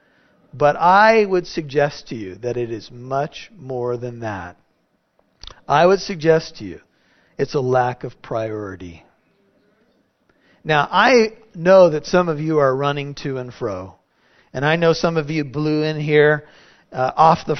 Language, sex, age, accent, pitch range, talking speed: English, male, 40-59, American, 135-170 Hz, 160 wpm